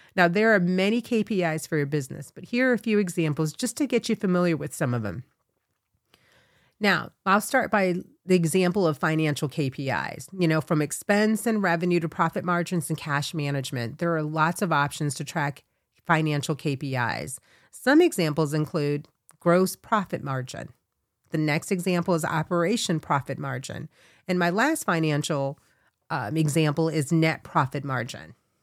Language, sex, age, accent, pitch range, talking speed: English, female, 40-59, American, 145-185 Hz, 160 wpm